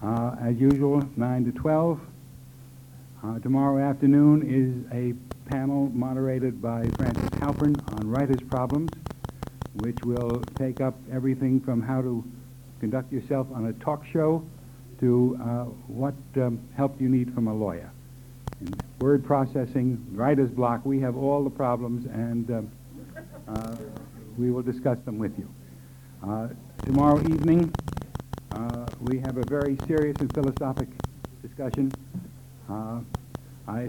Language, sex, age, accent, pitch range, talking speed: English, male, 60-79, American, 120-135 Hz, 130 wpm